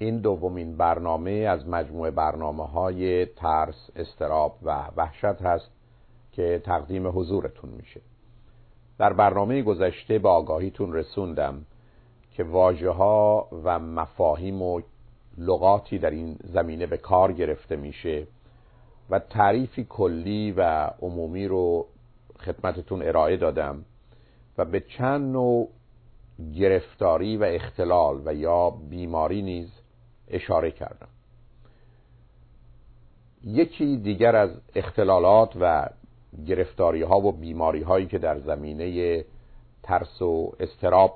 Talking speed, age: 110 wpm, 50-69